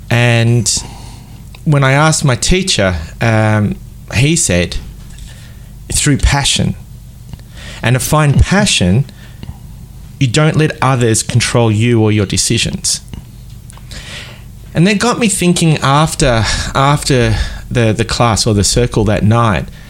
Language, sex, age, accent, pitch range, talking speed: English, male, 30-49, Australian, 115-155 Hz, 120 wpm